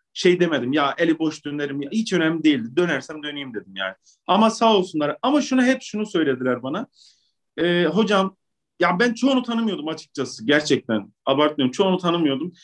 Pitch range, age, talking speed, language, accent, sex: 155-200 Hz, 40-59, 160 wpm, Turkish, native, male